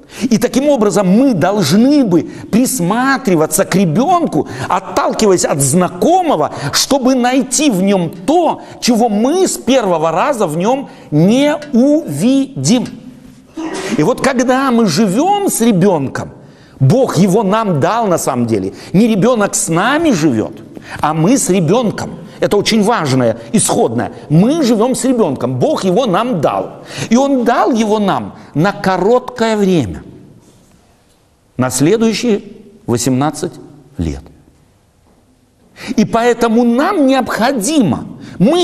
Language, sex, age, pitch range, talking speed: Russian, male, 60-79, 165-255 Hz, 120 wpm